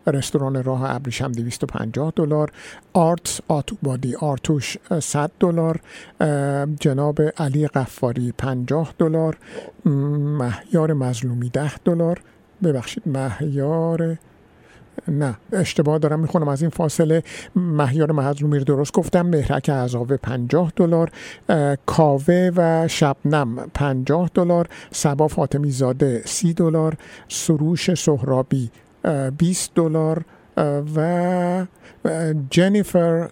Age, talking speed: 50-69, 90 wpm